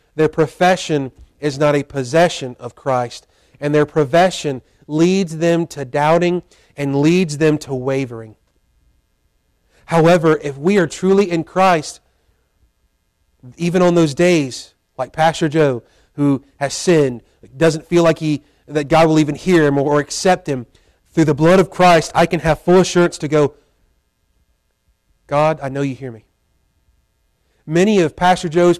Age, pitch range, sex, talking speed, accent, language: 30-49, 140-170 Hz, male, 150 wpm, American, English